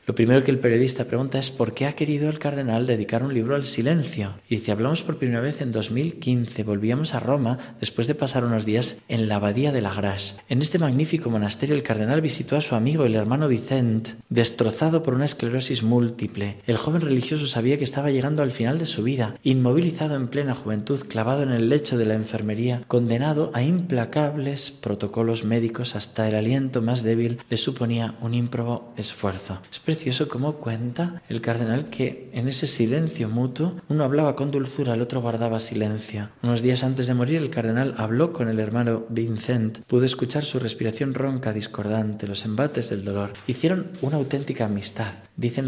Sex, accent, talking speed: male, Spanish, 185 wpm